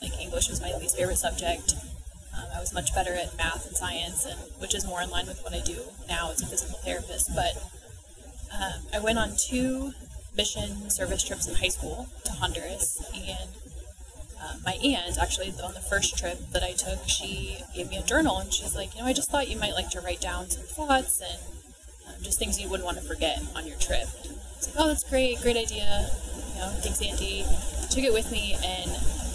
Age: 20-39